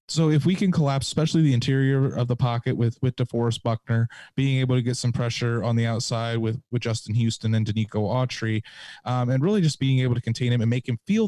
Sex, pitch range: male, 115-130 Hz